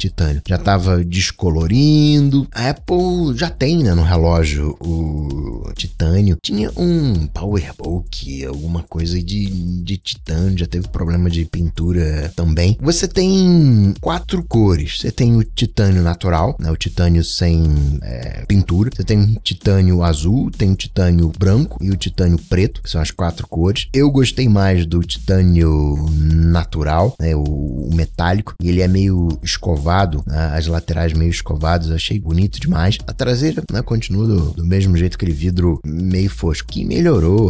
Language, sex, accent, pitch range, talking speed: Portuguese, male, Brazilian, 80-100 Hz, 155 wpm